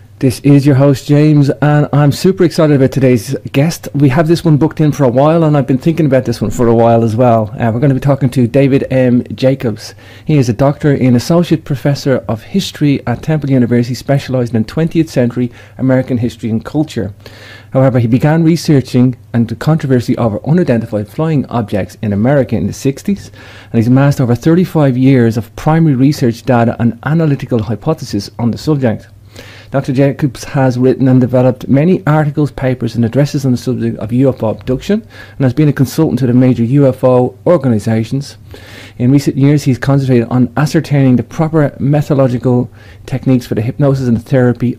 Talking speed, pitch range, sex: 185 wpm, 115-140 Hz, male